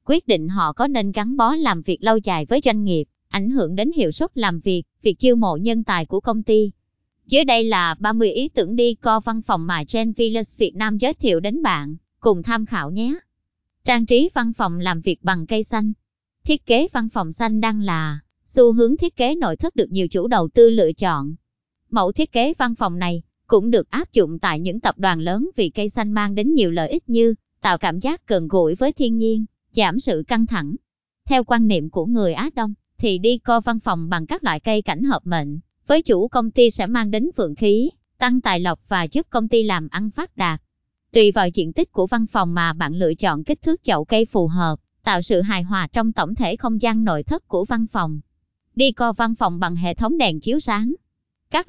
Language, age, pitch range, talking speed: Vietnamese, 20-39, 185-245 Hz, 230 wpm